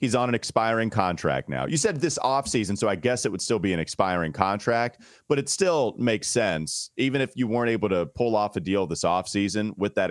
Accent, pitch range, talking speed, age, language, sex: American, 105-135 Hz, 245 wpm, 30-49, English, male